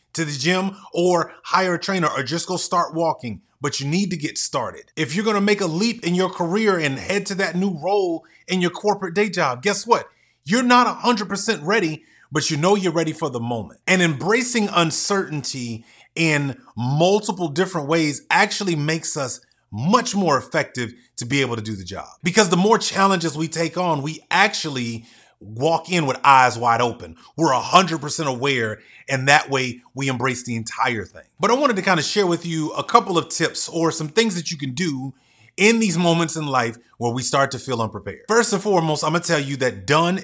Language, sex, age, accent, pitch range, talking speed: English, male, 30-49, American, 135-185 Hz, 205 wpm